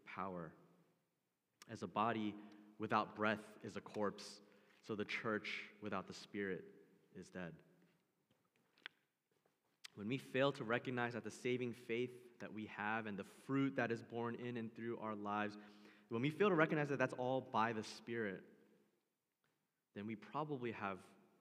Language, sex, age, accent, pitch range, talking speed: English, male, 20-39, American, 105-130 Hz, 155 wpm